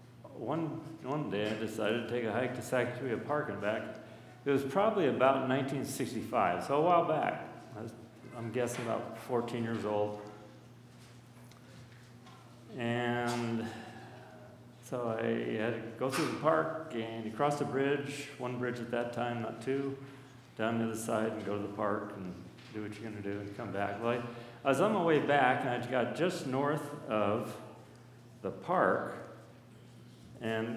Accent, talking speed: American, 170 wpm